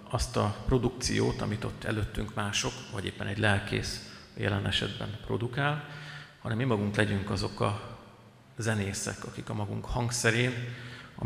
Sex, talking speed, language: male, 140 wpm, Hungarian